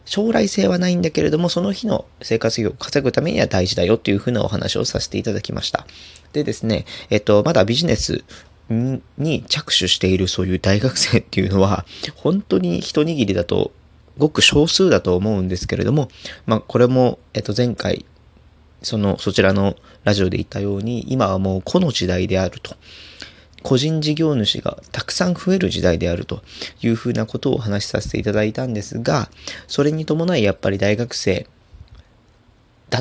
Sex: male